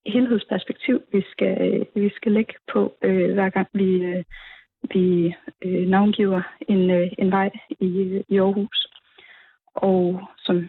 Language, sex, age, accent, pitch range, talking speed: Danish, female, 20-39, native, 185-205 Hz, 135 wpm